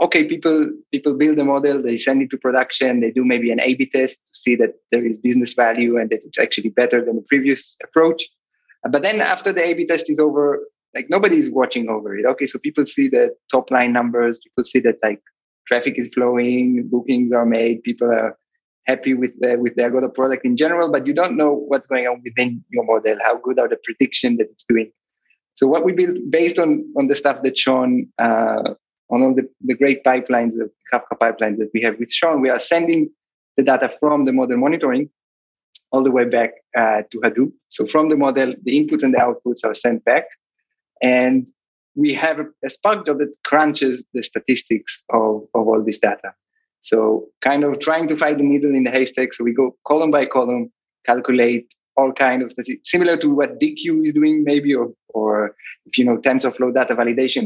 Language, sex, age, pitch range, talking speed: English, male, 20-39, 120-150 Hz, 210 wpm